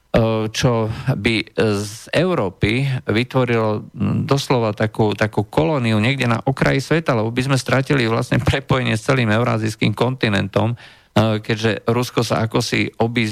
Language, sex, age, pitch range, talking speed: Slovak, male, 50-69, 110-130 Hz, 125 wpm